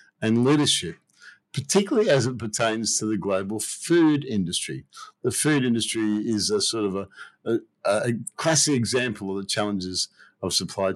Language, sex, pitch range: English, male, 100-130 Hz